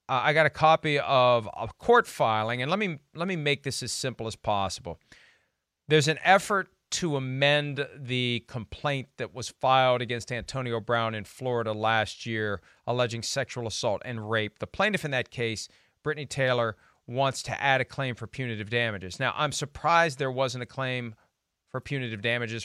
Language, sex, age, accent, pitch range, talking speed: English, male, 40-59, American, 120-150 Hz, 180 wpm